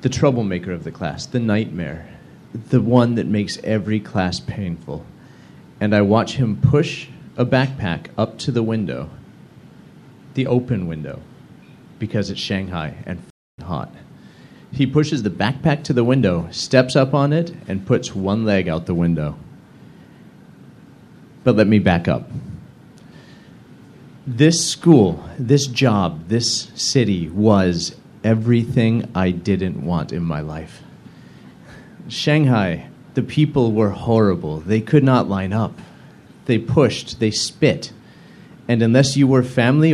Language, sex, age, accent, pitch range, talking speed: English, male, 40-59, American, 95-130 Hz, 135 wpm